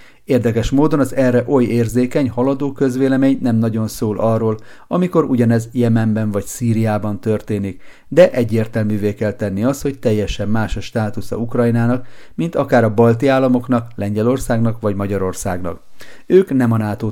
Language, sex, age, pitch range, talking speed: Hungarian, male, 40-59, 105-125 Hz, 145 wpm